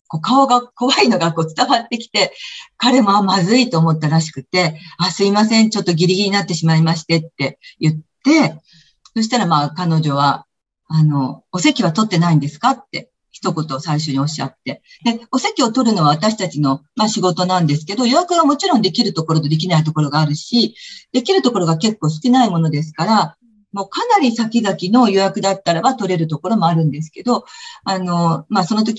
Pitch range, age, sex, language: 160-240 Hz, 40-59, female, Japanese